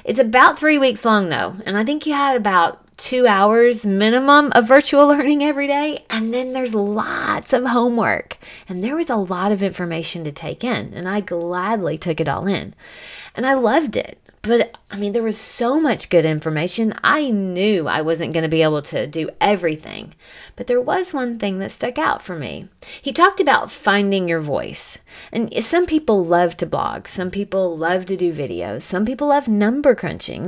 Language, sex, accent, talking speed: English, female, American, 195 wpm